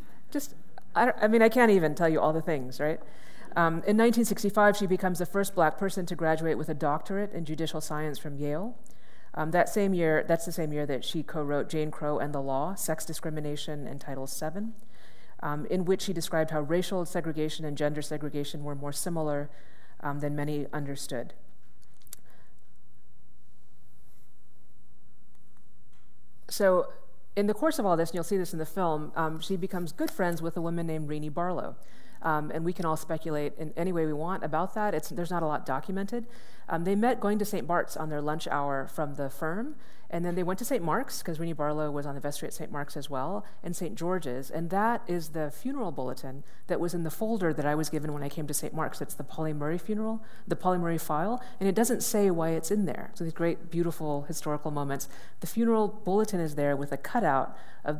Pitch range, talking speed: 150-185 Hz, 215 wpm